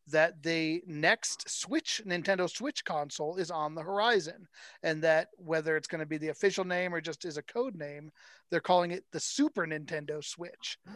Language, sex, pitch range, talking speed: English, male, 155-200 Hz, 180 wpm